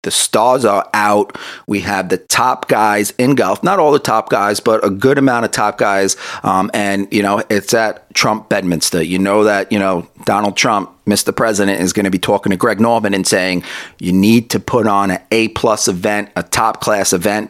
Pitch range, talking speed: 95-110 Hz, 215 wpm